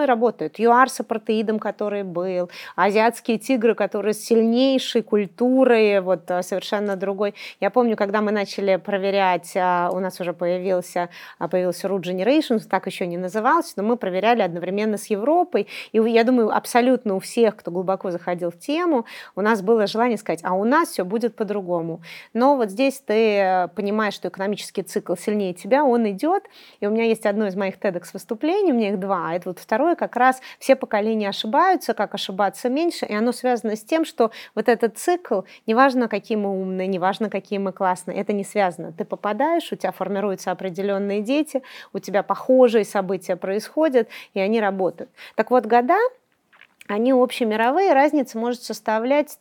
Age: 30-49